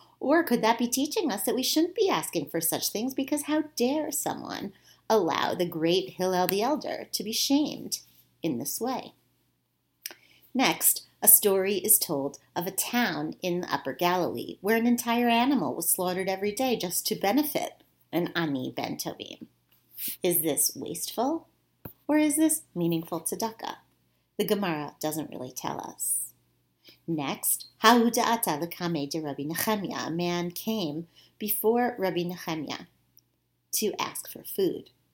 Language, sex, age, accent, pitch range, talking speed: English, female, 40-59, American, 165-240 Hz, 140 wpm